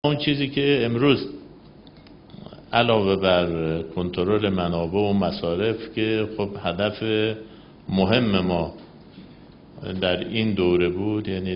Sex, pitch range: male, 95-115 Hz